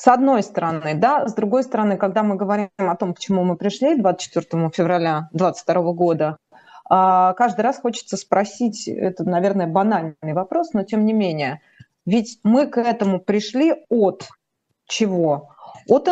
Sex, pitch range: female, 180-250 Hz